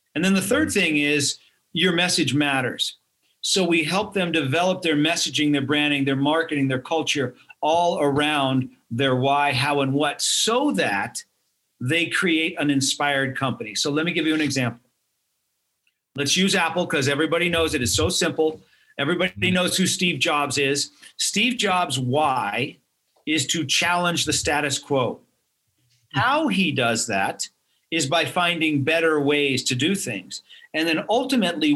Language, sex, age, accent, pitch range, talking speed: English, male, 50-69, American, 145-180 Hz, 155 wpm